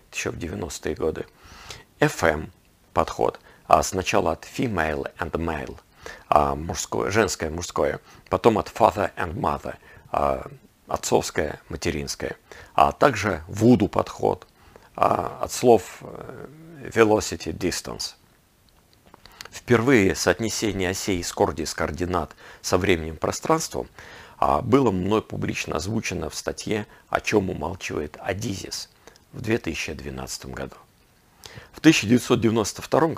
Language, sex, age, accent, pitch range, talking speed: Russian, male, 50-69, native, 80-115 Hz, 95 wpm